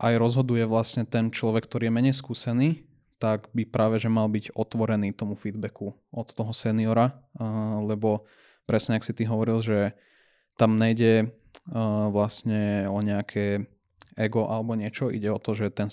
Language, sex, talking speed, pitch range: Slovak, male, 155 wpm, 105-115 Hz